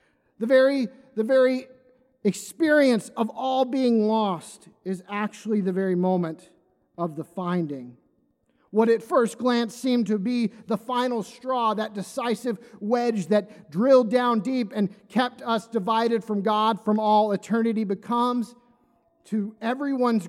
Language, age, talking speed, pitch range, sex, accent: English, 40-59, 135 wpm, 205-260 Hz, male, American